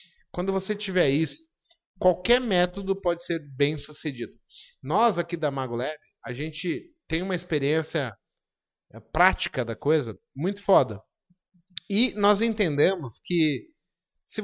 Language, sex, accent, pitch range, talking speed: Portuguese, male, Brazilian, 140-190 Hz, 120 wpm